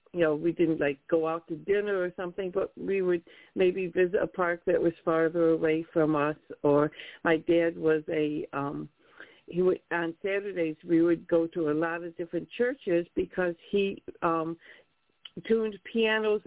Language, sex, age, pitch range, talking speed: English, female, 60-79, 165-195 Hz, 180 wpm